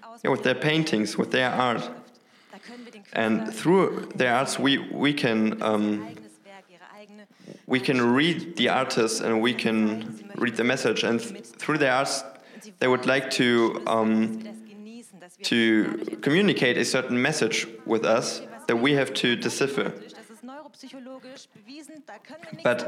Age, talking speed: 20-39, 130 wpm